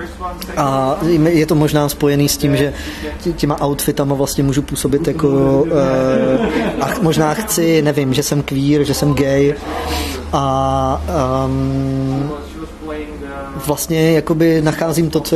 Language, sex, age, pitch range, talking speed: Czech, male, 20-39, 140-155 Hz, 120 wpm